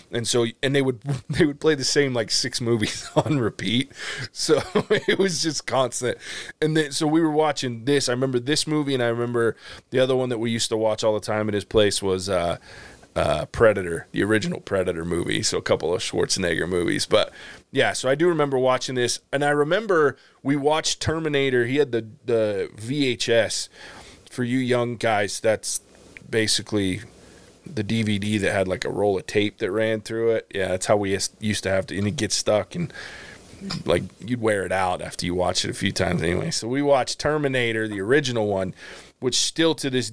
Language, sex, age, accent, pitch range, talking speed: English, male, 20-39, American, 105-135 Hz, 205 wpm